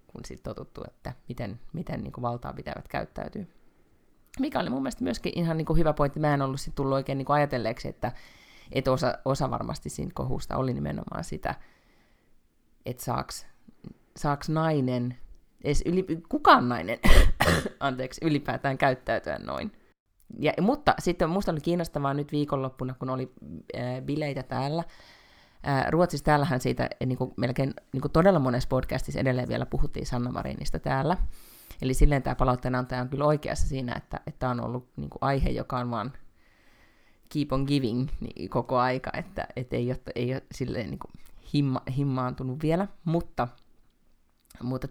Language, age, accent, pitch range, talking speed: Finnish, 30-49, native, 125-150 Hz, 145 wpm